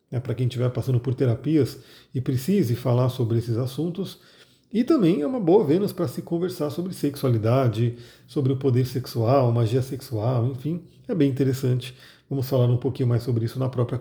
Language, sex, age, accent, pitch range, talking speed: Portuguese, male, 40-59, Brazilian, 125-160 Hz, 185 wpm